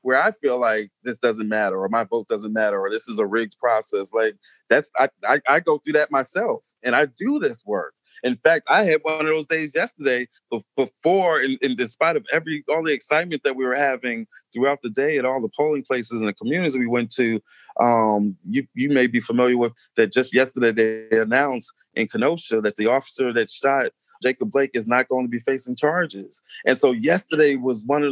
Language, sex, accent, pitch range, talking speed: English, male, American, 120-160 Hz, 220 wpm